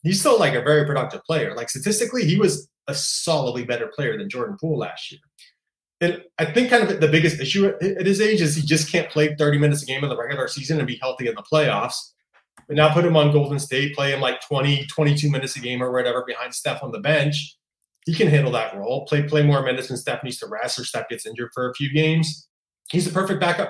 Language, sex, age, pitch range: English, male, 30-49, 135-165 Hz